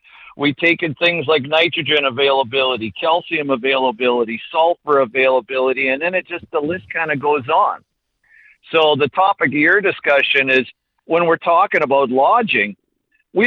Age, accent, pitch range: 50-69, American, 130-160 Hz